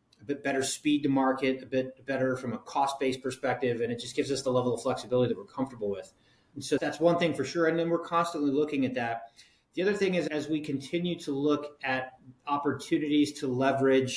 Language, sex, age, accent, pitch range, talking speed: English, male, 30-49, American, 125-145 Hz, 225 wpm